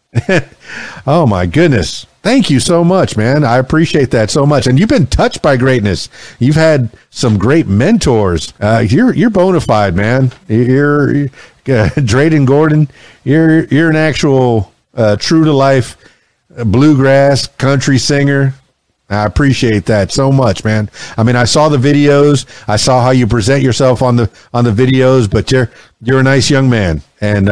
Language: English